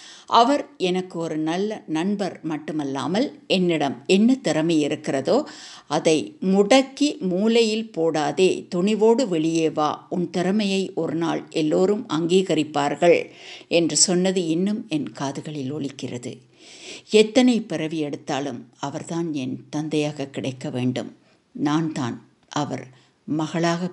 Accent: native